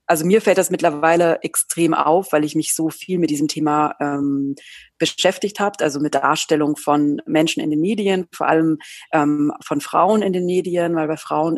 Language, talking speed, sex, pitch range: German, 190 wpm, female, 155-180 Hz